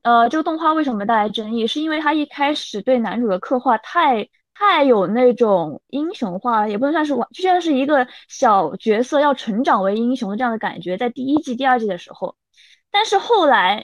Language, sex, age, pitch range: Chinese, female, 20-39, 220-285 Hz